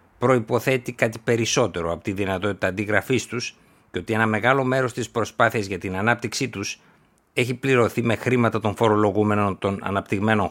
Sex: male